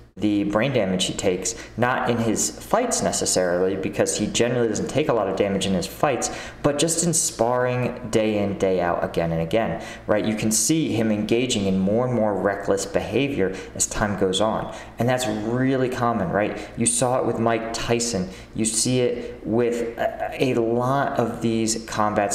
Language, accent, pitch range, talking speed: English, American, 105-120 Hz, 185 wpm